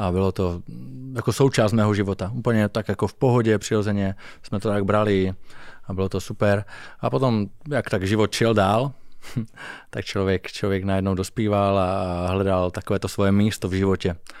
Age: 20-39